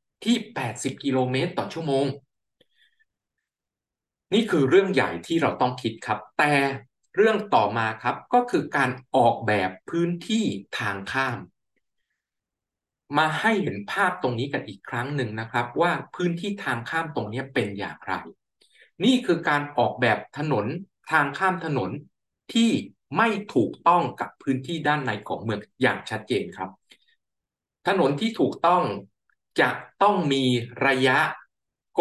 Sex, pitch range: male, 120-165 Hz